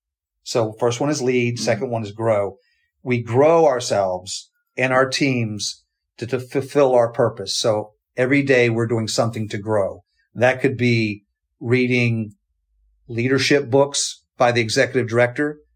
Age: 40-59